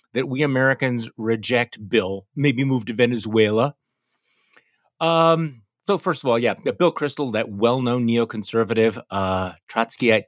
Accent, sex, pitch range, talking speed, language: American, male, 110-150 Hz, 130 wpm, English